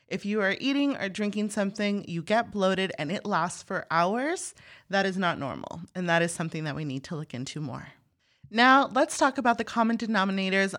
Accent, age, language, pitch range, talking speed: American, 30-49, English, 165-215 Hz, 205 wpm